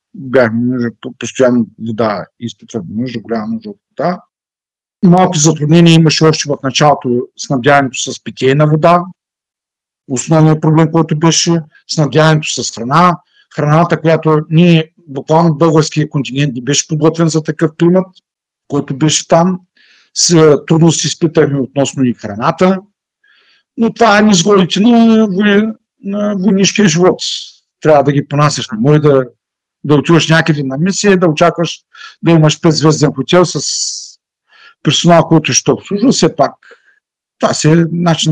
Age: 50-69